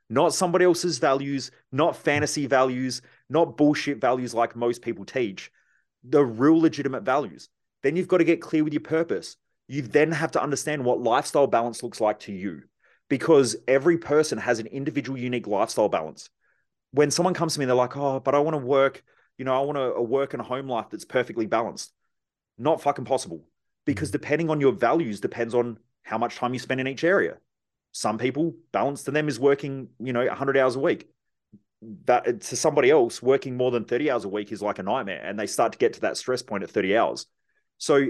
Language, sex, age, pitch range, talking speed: English, male, 30-49, 120-150 Hz, 215 wpm